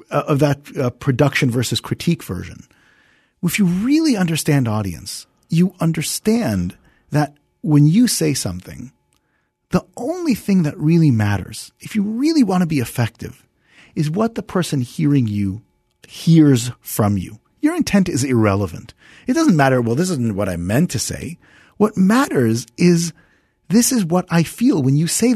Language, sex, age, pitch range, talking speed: English, male, 40-59, 120-185 Hz, 160 wpm